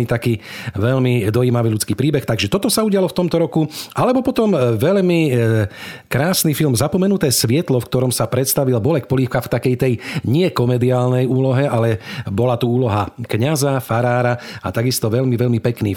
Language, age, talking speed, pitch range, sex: Slovak, 40-59, 155 wpm, 115-135 Hz, male